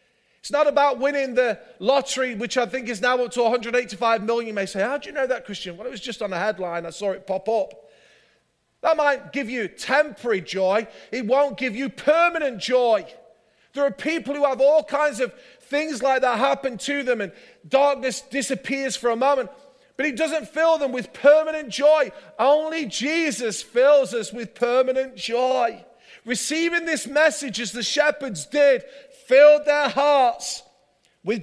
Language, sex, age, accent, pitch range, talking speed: English, male, 30-49, British, 240-295 Hz, 180 wpm